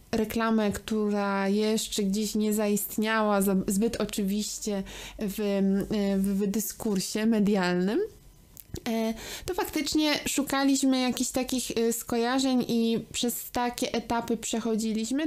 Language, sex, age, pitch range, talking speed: Polish, female, 20-39, 210-245 Hz, 90 wpm